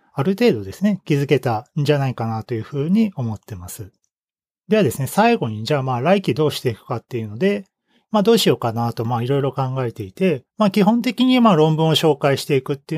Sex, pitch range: male, 125-190 Hz